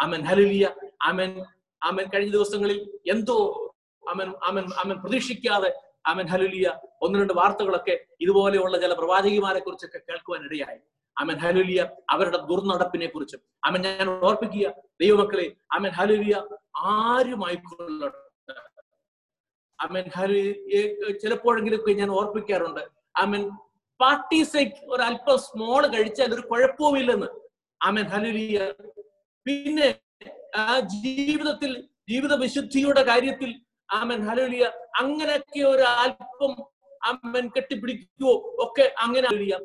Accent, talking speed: native, 90 wpm